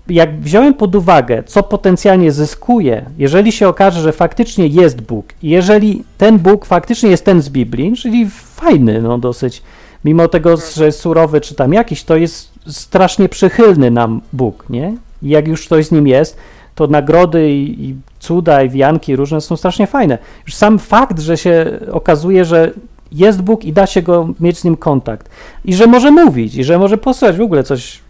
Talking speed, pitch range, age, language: 185 wpm, 145-195 Hz, 40-59, Polish